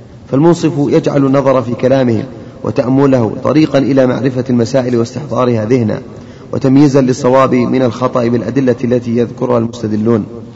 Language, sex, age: Arabic, male, 30-49